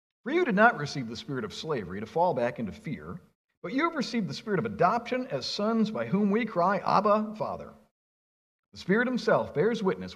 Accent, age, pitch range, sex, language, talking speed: American, 50-69, 130-205 Hz, male, English, 205 wpm